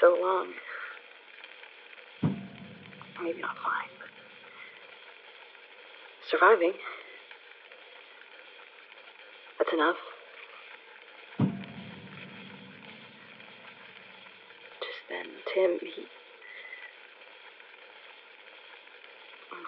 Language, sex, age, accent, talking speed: English, female, 30-49, American, 45 wpm